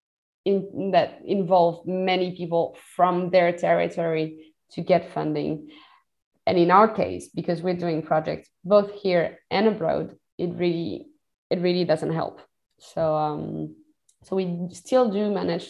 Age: 20-39